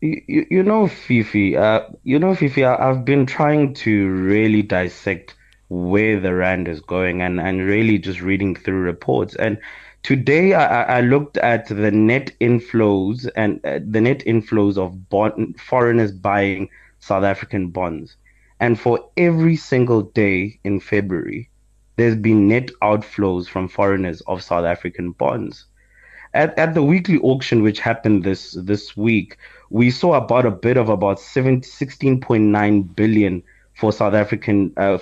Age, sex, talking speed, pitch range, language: 20-39, male, 150 wpm, 100-125 Hz, English